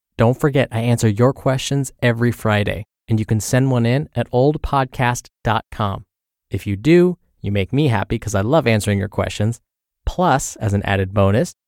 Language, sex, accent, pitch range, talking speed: English, male, American, 100-135 Hz, 175 wpm